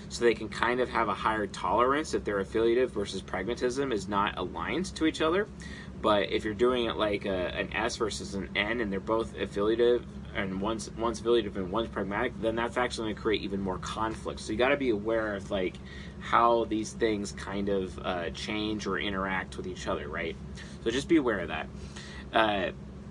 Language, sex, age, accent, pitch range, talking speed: English, male, 20-39, American, 95-120 Hz, 205 wpm